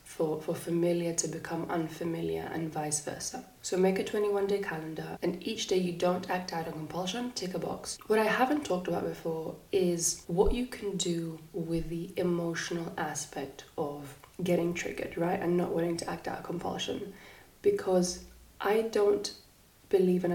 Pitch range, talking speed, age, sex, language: 170-190 Hz, 170 wpm, 20-39, female, English